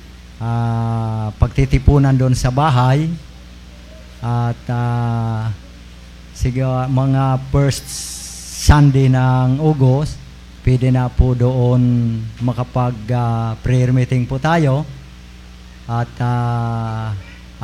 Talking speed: 85 wpm